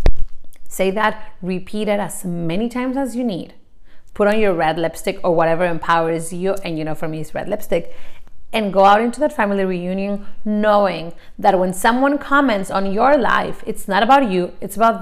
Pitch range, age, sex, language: 185-240 Hz, 30-49, female, English